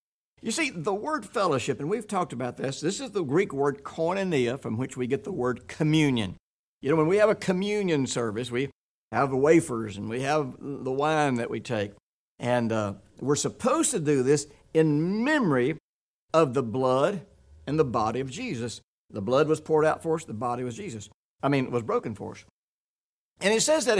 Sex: male